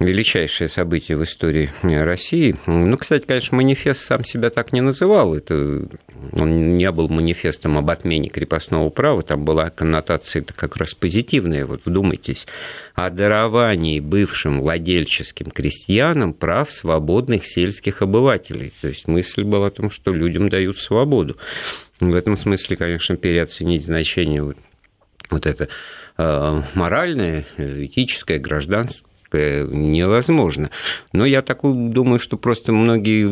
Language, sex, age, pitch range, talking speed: Russian, male, 50-69, 80-105 Hz, 130 wpm